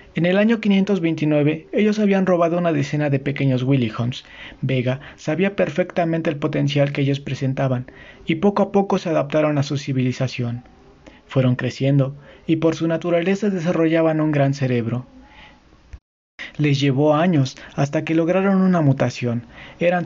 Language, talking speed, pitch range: Spanish, 145 wpm, 135-170 Hz